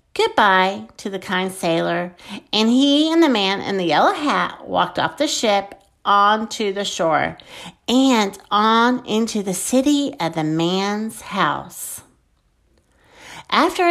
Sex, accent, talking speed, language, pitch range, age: female, American, 135 wpm, English, 200-310 Hz, 50-69